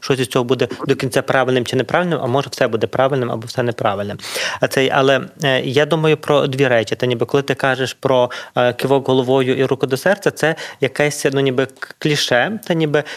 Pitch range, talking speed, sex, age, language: 135-155 Hz, 210 wpm, male, 20-39, Ukrainian